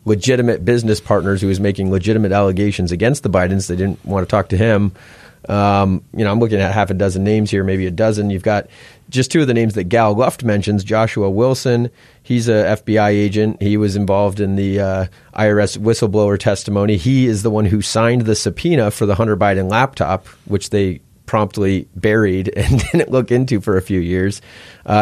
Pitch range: 100-120 Hz